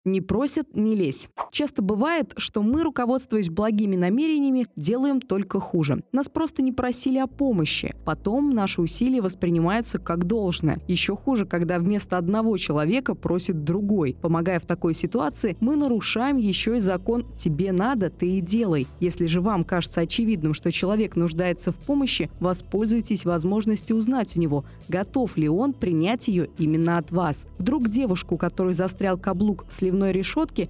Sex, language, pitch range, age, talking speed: female, Russian, 180-245 Hz, 20-39, 150 wpm